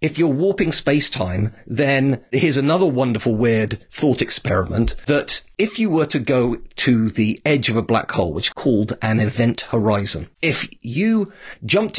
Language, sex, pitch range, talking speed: English, male, 105-135 Hz, 165 wpm